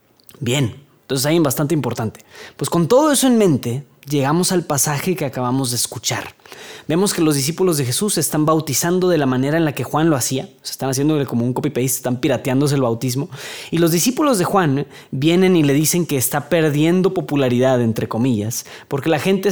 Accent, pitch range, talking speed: Mexican, 135-180 Hz, 205 wpm